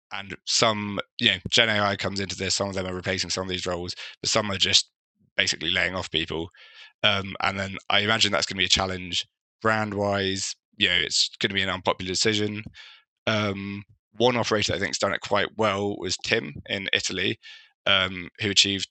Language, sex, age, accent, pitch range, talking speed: English, male, 20-39, British, 90-100 Hz, 205 wpm